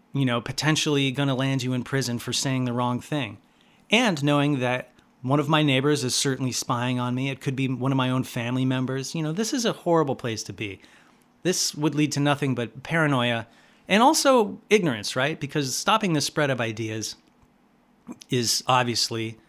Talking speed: 195 wpm